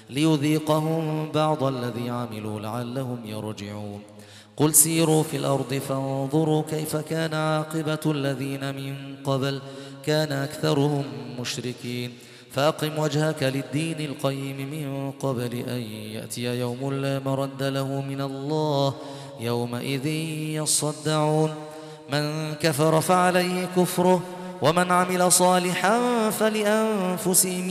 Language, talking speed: Arabic, 95 wpm